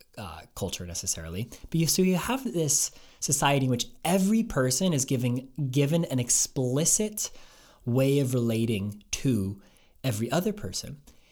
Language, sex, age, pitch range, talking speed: English, male, 20-39, 115-155 Hz, 140 wpm